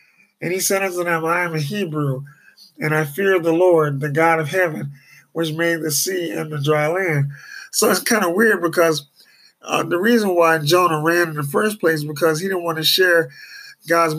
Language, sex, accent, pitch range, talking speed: English, male, American, 155-190 Hz, 210 wpm